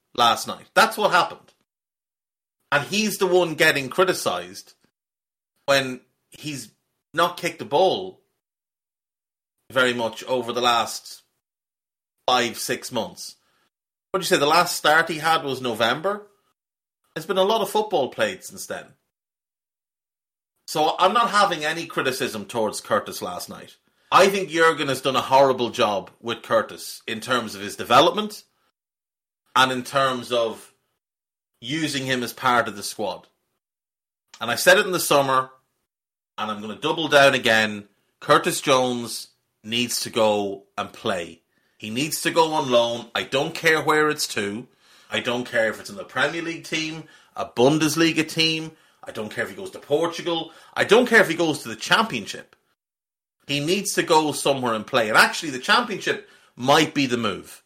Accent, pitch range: Irish, 120-165 Hz